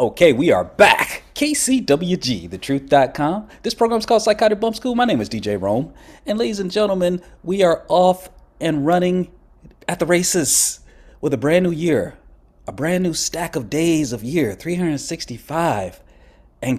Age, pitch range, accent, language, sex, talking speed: 30-49, 120-170 Hz, American, English, male, 165 wpm